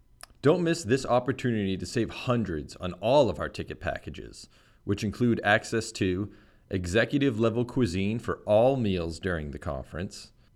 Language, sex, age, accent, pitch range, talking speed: English, male, 30-49, American, 100-120 Hz, 150 wpm